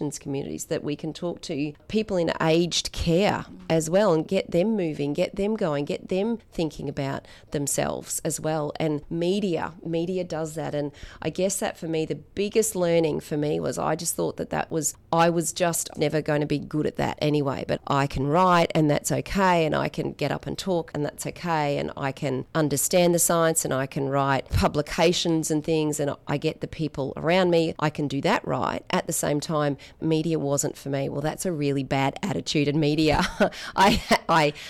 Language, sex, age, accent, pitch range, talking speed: English, female, 30-49, Australian, 145-175 Hz, 210 wpm